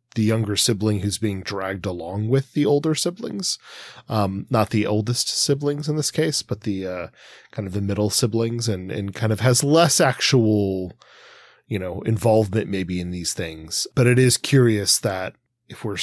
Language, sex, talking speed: English, male, 180 wpm